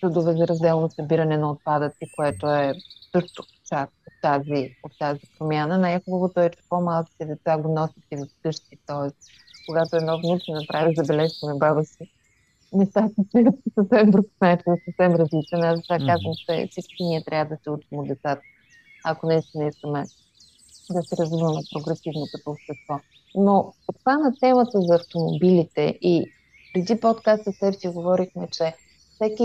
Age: 30-49